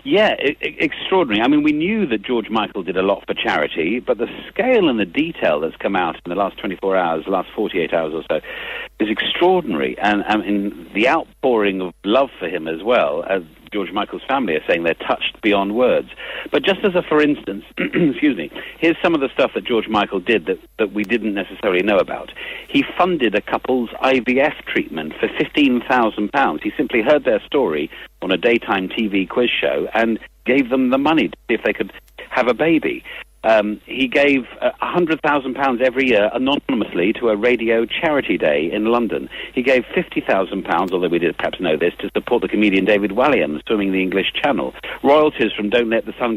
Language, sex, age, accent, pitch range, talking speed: English, male, 50-69, British, 105-165 Hz, 205 wpm